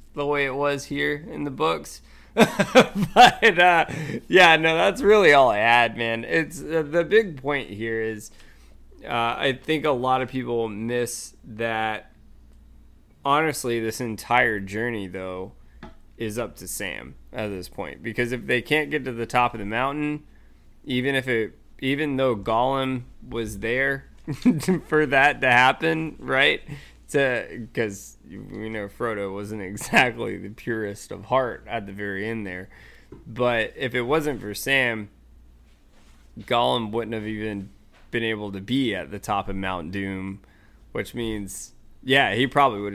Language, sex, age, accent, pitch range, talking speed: English, male, 20-39, American, 100-135 Hz, 155 wpm